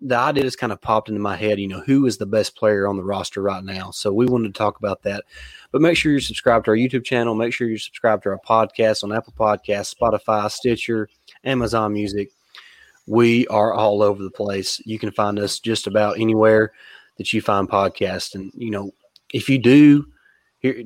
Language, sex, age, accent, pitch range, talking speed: English, male, 20-39, American, 105-120 Hz, 215 wpm